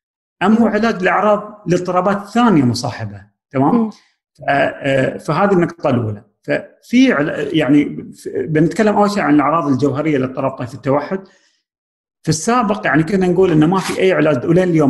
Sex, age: male, 40-59